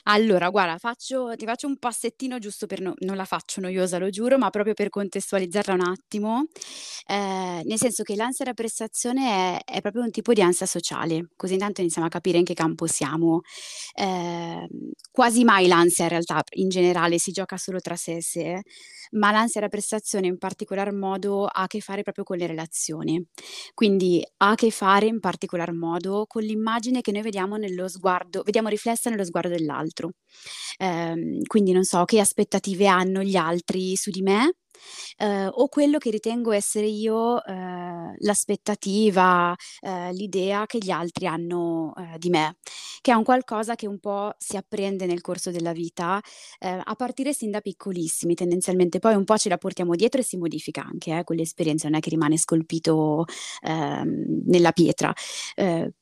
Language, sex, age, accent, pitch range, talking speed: Italian, female, 20-39, native, 175-215 Hz, 185 wpm